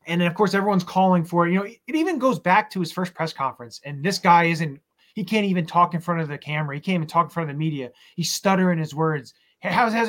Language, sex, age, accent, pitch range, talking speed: English, male, 20-39, American, 160-195 Hz, 280 wpm